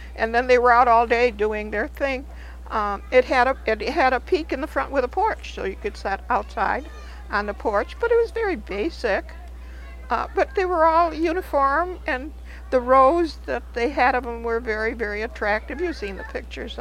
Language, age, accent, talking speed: English, 60-79, American, 210 wpm